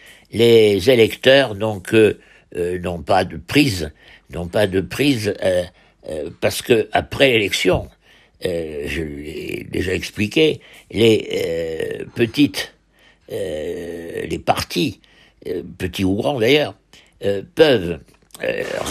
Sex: male